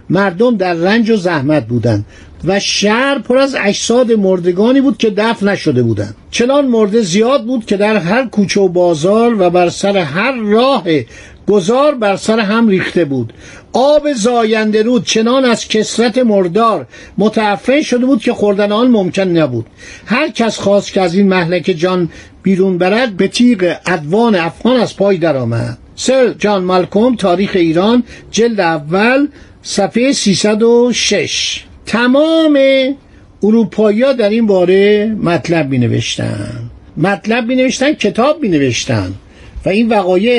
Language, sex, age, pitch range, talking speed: Persian, male, 50-69, 175-235 Hz, 140 wpm